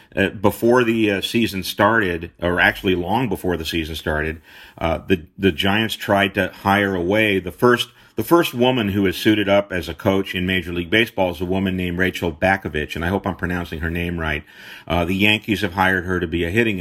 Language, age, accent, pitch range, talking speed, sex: English, 50-69, American, 85-100 Hz, 220 wpm, male